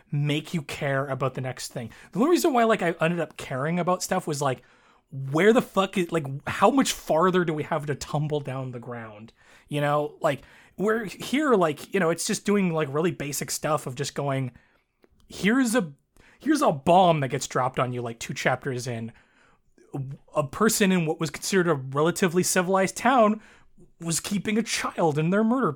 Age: 20-39